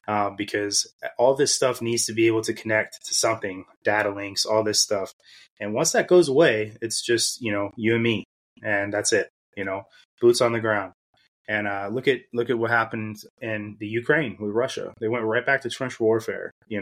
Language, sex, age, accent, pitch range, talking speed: English, male, 20-39, American, 105-120 Hz, 215 wpm